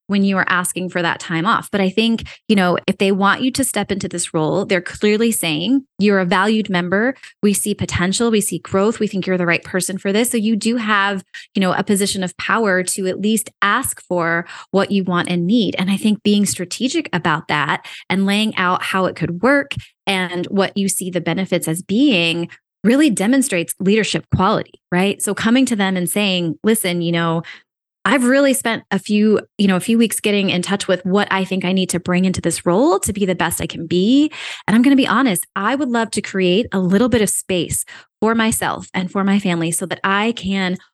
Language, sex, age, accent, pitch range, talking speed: English, female, 20-39, American, 185-230 Hz, 230 wpm